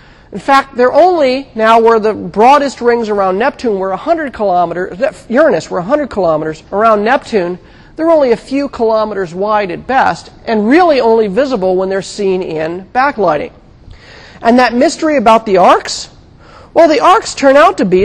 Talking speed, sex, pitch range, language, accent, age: 165 wpm, male, 180-250 Hz, English, American, 40-59